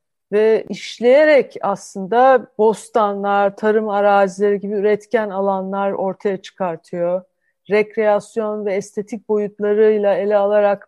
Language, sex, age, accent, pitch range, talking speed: Turkish, female, 40-59, native, 200-245 Hz, 95 wpm